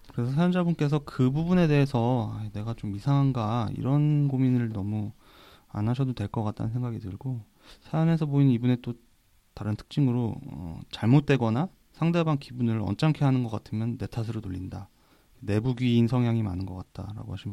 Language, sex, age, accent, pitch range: Korean, male, 30-49, native, 105-135 Hz